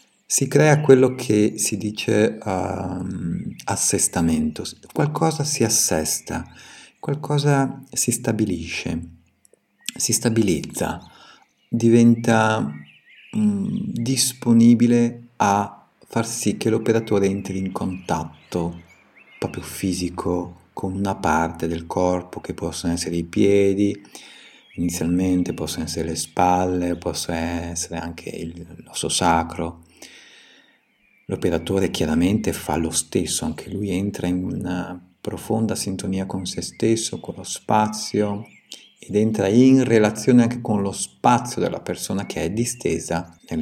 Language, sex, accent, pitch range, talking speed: Italian, male, native, 85-115 Hz, 110 wpm